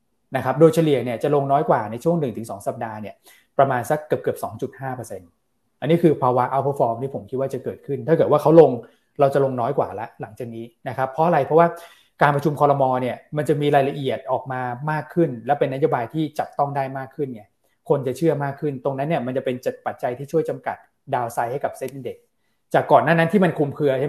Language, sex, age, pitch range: Thai, male, 20-39, 125-150 Hz